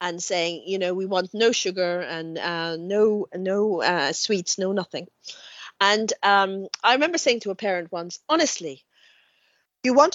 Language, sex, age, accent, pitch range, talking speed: English, female, 40-59, British, 190-255 Hz, 165 wpm